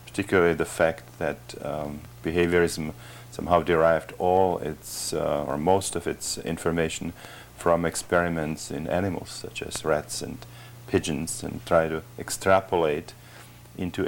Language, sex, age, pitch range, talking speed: English, male, 50-69, 80-95 Hz, 130 wpm